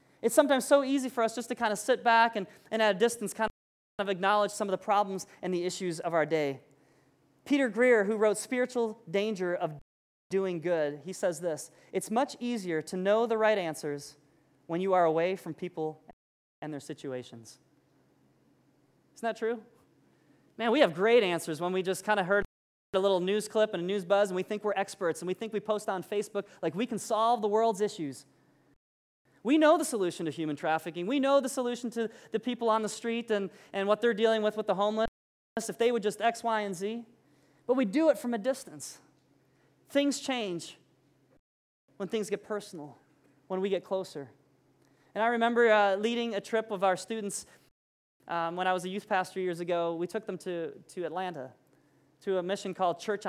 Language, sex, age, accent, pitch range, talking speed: English, male, 20-39, American, 170-220 Hz, 205 wpm